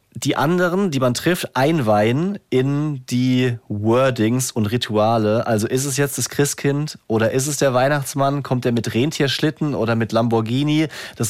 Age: 30-49